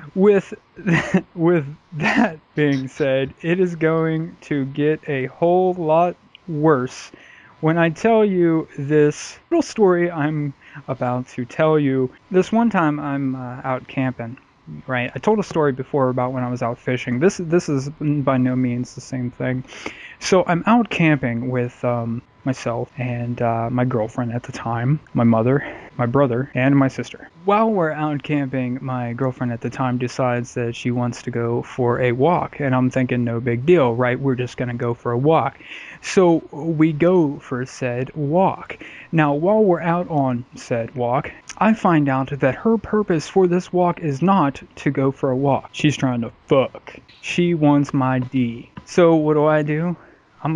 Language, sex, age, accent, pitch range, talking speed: English, male, 20-39, American, 125-165 Hz, 180 wpm